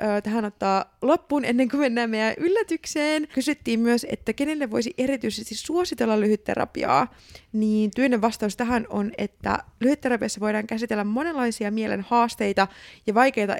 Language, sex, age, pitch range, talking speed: Finnish, female, 20-39, 210-255 Hz, 130 wpm